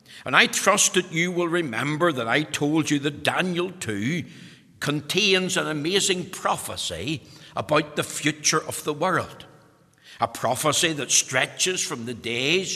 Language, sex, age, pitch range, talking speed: English, male, 60-79, 135-170 Hz, 145 wpm